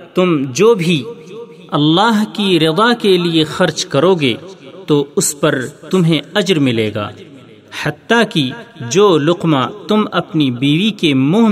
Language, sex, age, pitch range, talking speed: Urdu, male, 40-59, 145-195 Hz, 140 wpm